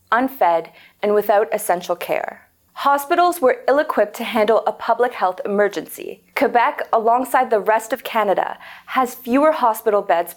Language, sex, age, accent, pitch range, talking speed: English, female, 20-39, American, 200-255 Hz, 140 wpm